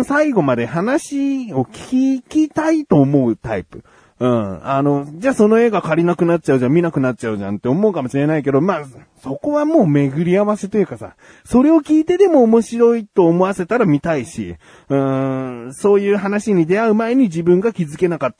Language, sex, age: Japanese, male, 30-49